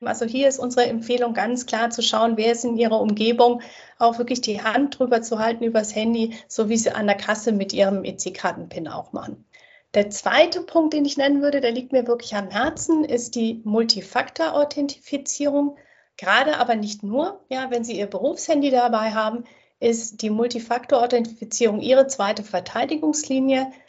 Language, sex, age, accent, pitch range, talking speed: German, female, 30-49, German, 215-260 Hz, 170 wpm